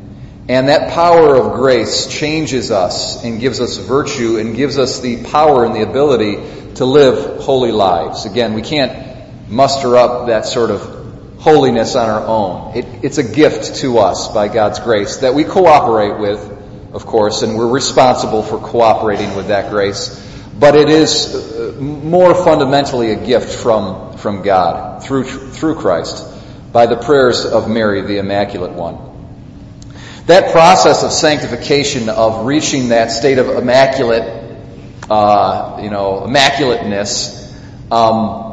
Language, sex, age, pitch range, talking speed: English, male, 40-59, 110-135 Hz, 145 wpm